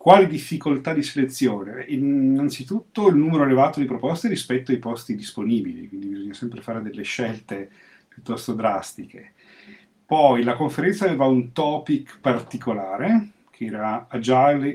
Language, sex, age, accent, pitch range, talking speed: Italian, male, 40-59, native, 110-145 Hz, 130 wpm